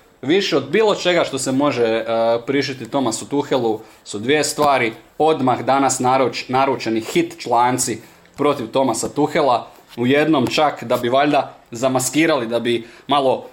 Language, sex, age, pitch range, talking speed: Croatian, male, 20-39, 110-130 Hz, 145 wpm